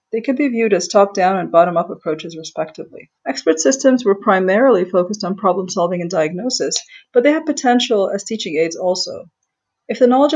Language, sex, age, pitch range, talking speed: English, female, 30-49, 185-265 Hz, 175 wpm